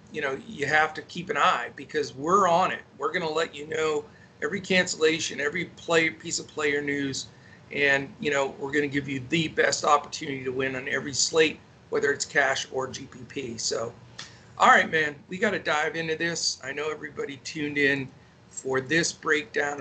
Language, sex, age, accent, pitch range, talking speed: English, male, 50-69, American, 145-175 Hz, 195 wpm